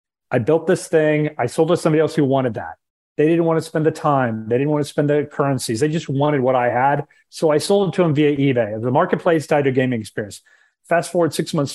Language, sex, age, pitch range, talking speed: English, male, 40-59, 145-175 Hz, 260 wpm